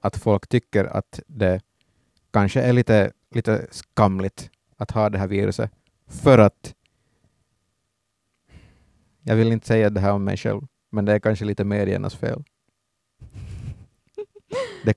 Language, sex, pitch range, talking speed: Finnish, male, 100-120 Hz, 135 wpm